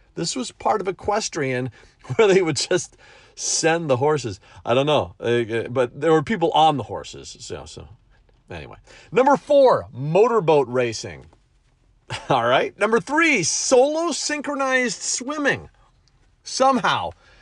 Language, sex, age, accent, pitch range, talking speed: English, male, 40-59, American, 130-195 Hz, 125 wpm